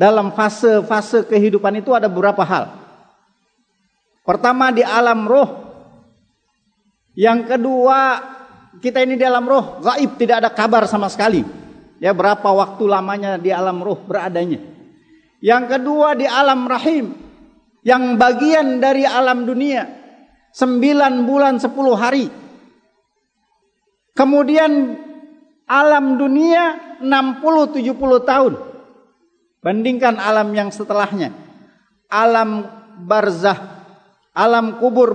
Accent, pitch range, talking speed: native, 230-290 Hz, 100 wpm